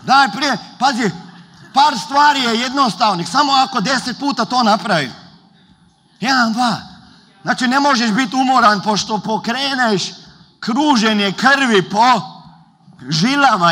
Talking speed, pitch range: 115 wpm, 175-240 Hz